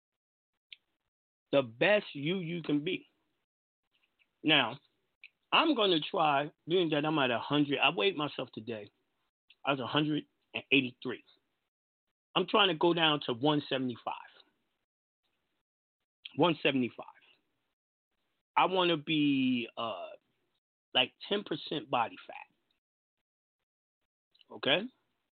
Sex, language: male, English